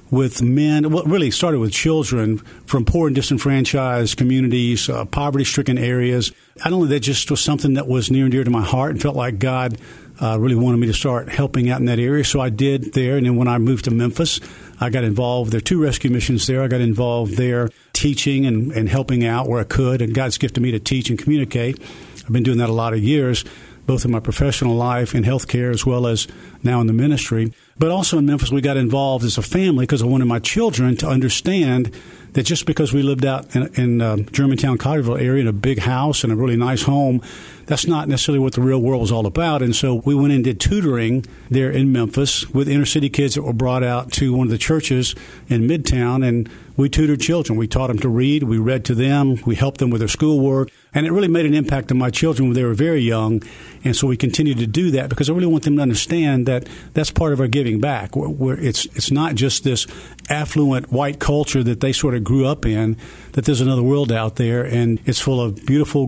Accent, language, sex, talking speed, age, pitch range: American, English, male, 240 wpm, 50-69, 120-140 Hz